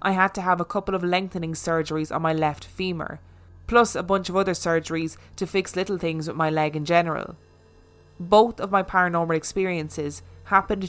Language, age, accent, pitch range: English, 20-39, Irish, 155-185 Hz